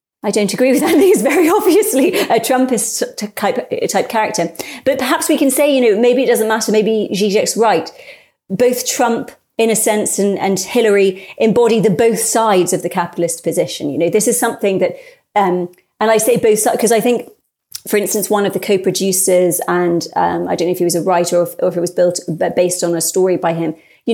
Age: 30-49